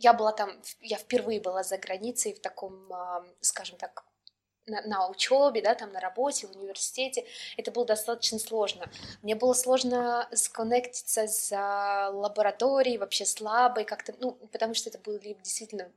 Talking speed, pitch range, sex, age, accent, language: 150 wpm, 200-245 Hz, female, 20-39, native, Russian